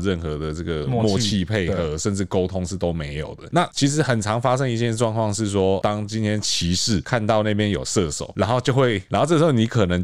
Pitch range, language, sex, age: 90-130 Hz, Chinese, male, 20-39